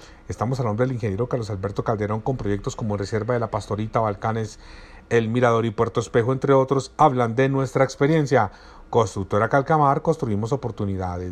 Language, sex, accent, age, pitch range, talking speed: Spanish, male, Colombian, 40-59, 110-140 Hz, 165 wpm